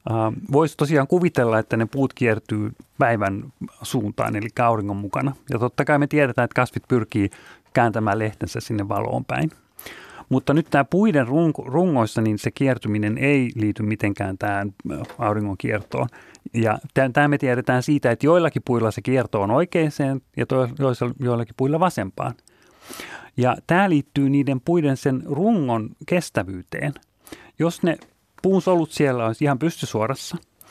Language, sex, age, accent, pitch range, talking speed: Finnish, male, 30-49, native, 115-145 Hz, 140 wpm